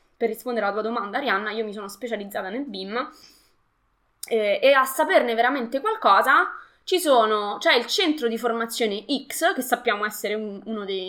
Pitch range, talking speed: 210-270 Hz, 175 wpm